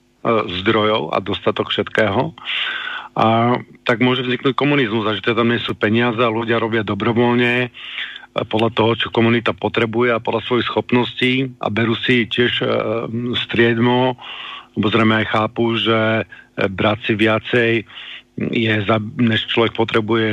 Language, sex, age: Slovak, male, 50-69